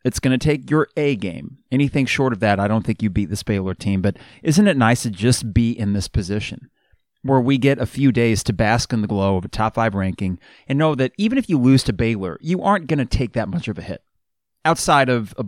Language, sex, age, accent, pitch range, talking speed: English, male, 30-49, American, 105-135 Hz, 260 wpm